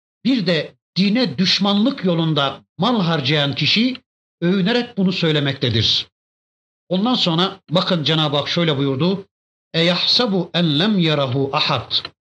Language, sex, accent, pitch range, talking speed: Turkish, male, native, 145-205 Hz, 105 wpm